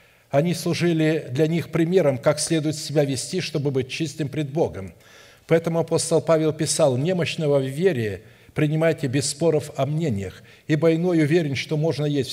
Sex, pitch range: male, 135-165 Hz